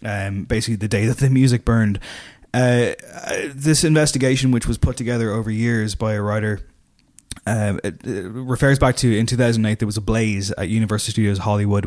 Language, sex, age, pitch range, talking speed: English, male, 20-39, 105-120 Hz, 180 wpm